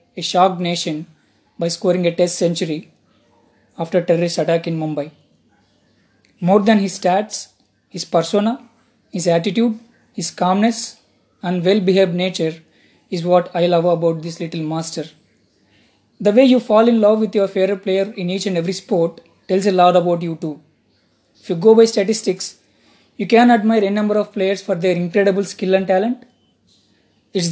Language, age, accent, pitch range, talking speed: English, 20-39, Indian, 170-210 Hz, 165 wpm